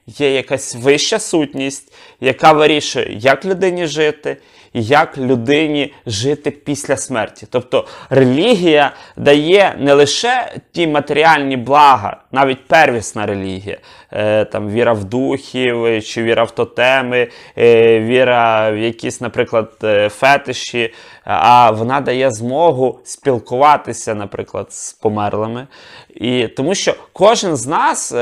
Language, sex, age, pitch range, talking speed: Ukrainian, male, 20-39, 120-150 Hz, 115 wpm